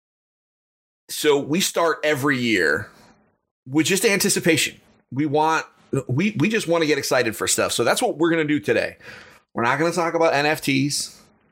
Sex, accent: male, American